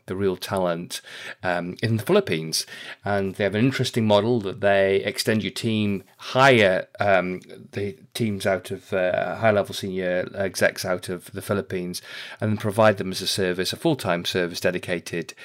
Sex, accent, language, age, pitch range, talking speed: male, British, English, 30-49, 95-120 Hz, 165 wpm